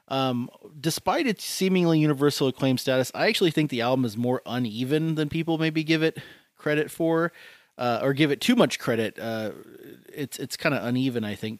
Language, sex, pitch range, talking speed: English, male, 115-140 Hz, 190 wpm